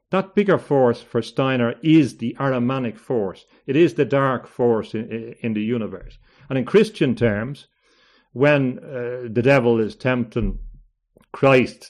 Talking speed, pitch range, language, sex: 145 wpm, 115-150 Hz, English, male